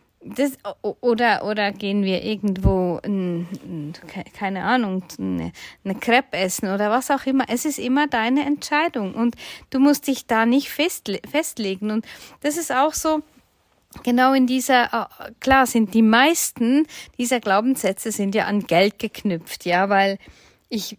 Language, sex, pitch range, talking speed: German, female, 205-260 Hz, 145 wpm